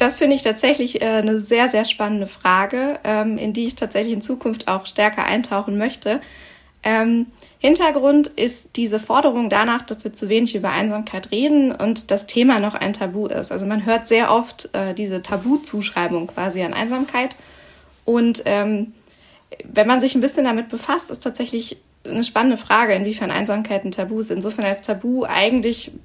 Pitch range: 200-245 Hz